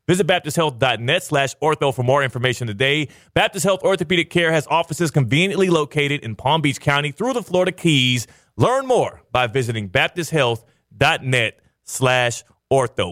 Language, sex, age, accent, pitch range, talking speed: English, male, 30-49, American, 120-160 Hz, 140 wpm